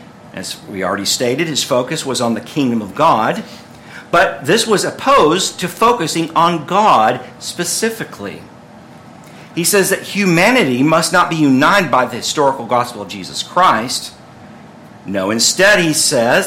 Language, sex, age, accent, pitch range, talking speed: English, male, 50-69, American, 125-180 Hz, 145 wpm